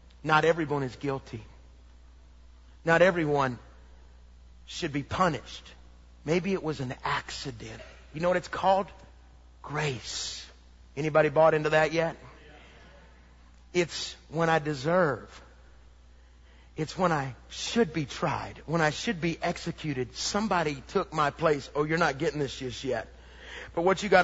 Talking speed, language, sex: 135 wpm, English, male